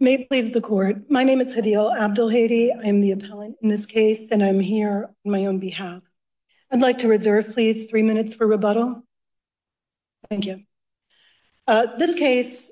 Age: 40-59